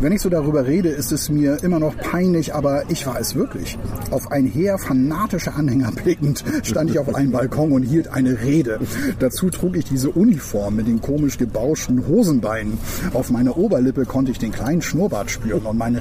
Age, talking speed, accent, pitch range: 10-29, 195 wpm, German, 125-155 Hz